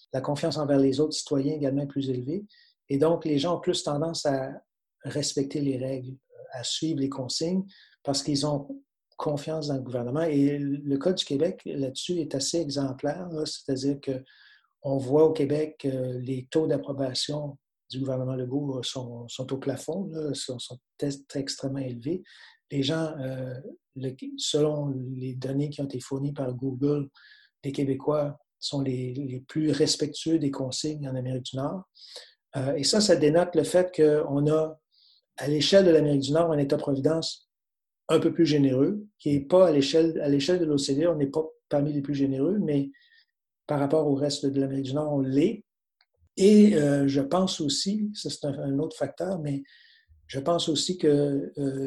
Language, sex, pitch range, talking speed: French, male, 135-160 Hz, 180 wpm